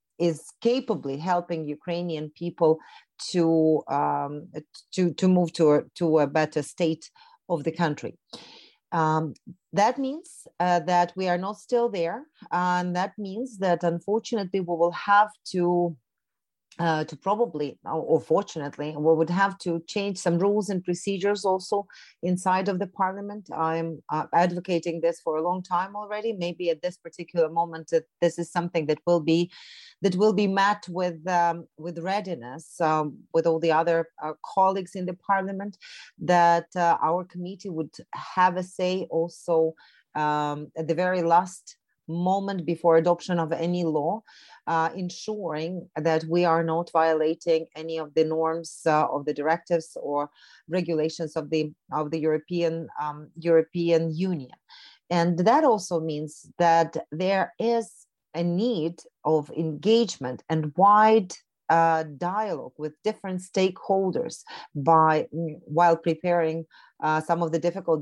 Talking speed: 145 wpm